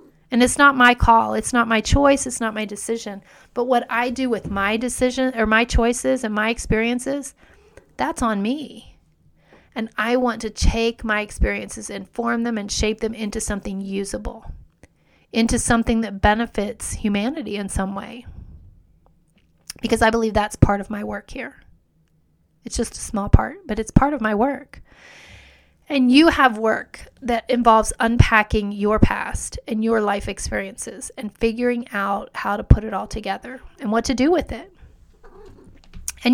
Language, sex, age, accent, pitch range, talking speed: English, female, 30-49, American, 205-245 Hz, 170 wpm